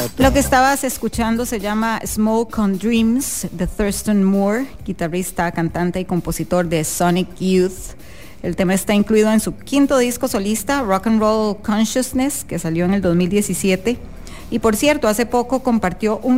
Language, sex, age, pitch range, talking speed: English, female, 30-49, 170-220 Hz, 160 wpm